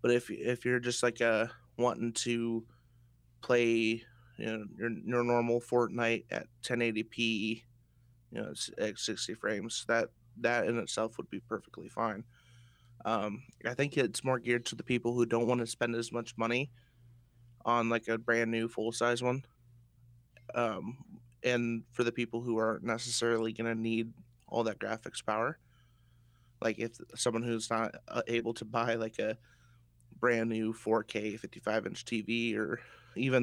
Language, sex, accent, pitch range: English, male, American, 115-120 Hz